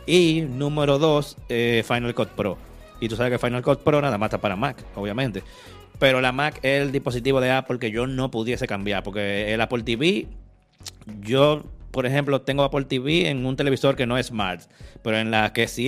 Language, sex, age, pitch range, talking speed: Spanish, male, 30-49, 115-145 Hz, 210 wpm